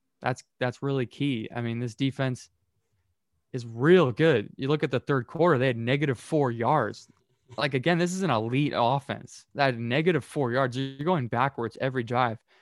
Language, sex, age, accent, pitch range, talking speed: English, male, 20-39, American, 120-135 Hz, 180 wpm